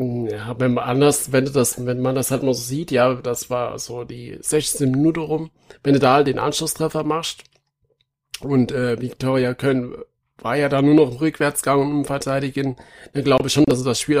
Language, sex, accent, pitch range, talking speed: German, male, German, 125-145 Hz, 205 wpm